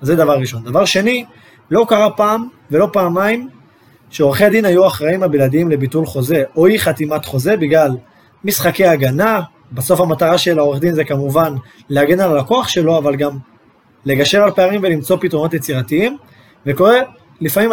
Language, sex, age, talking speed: Hebrew, male, 20-39, 150 wpm